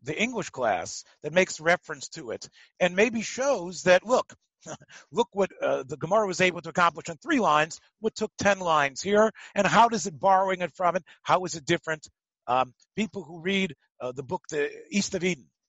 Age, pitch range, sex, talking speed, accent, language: 40-59, 150-205 Hz, male, 205 wpm, American, English